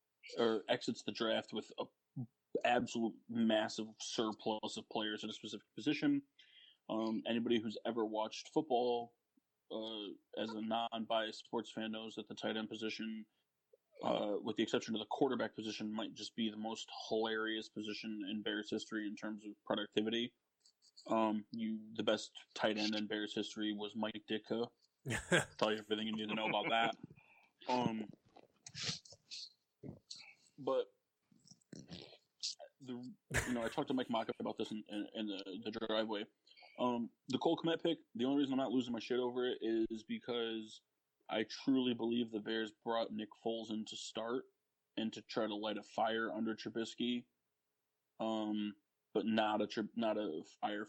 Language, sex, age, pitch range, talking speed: English, male, 20-39, 110-120 Hz, 165 wpm